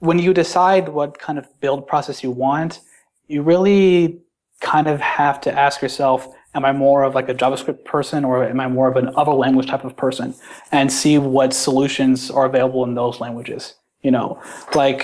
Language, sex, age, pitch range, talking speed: English, male, 20-39, 125-140 Hz, 195 wpm